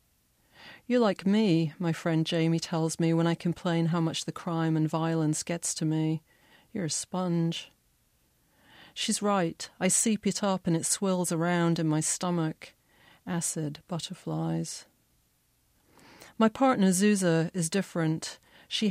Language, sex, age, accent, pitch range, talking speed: English, female, 40-59, British, 160-190 Hz, 140 wpm